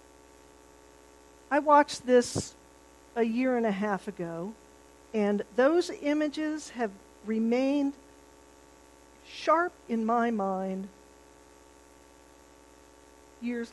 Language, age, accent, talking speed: English, 50-69, American, 85 wpm